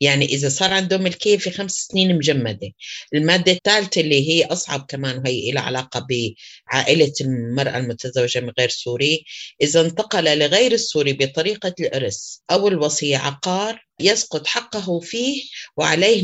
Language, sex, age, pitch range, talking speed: Arabic, female, 30-49, 140-180 Hz, 135 wpm